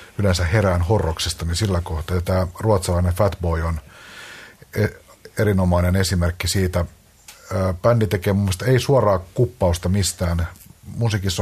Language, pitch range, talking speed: Finnish, 90-100 Hz, 120 wpm